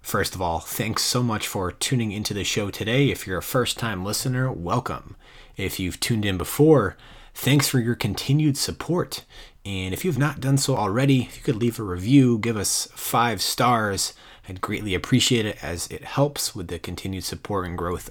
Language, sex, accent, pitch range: English, male, American, 95-125 Hz